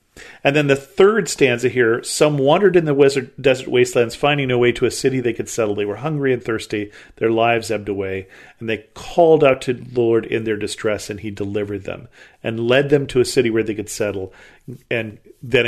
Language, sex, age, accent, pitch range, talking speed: English, male, 40-59, American, 110-130 Hz, 215 wpm